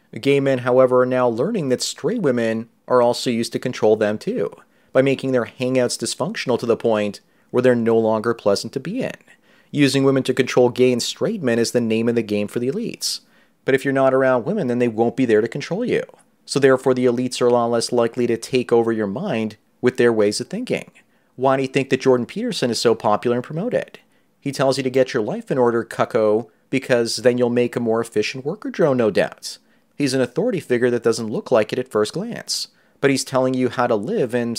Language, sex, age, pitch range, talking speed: English, male, 30-49, 115-135 Hz, 235 wpm